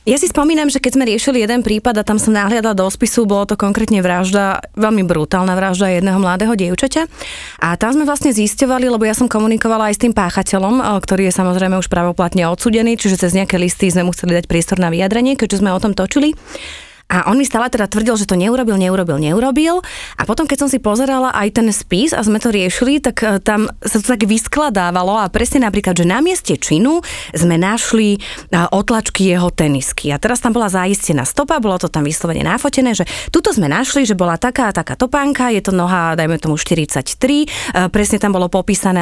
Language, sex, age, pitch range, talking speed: Slovak, female, 30-49, 185-250 Hz, 205 wpm